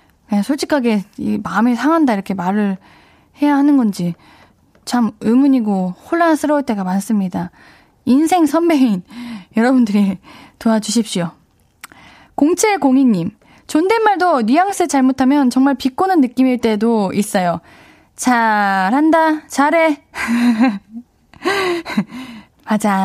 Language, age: Korean, 10-29